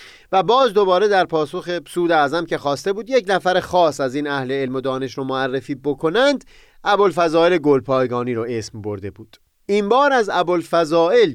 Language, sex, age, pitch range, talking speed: Persian, male, 30-49, 130-210 Hz, 170 wpm